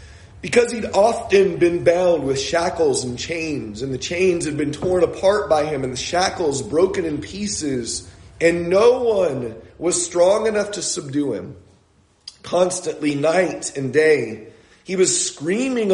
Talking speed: 150 wpm